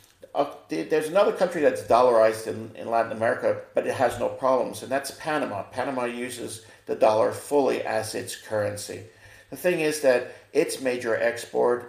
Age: 50-69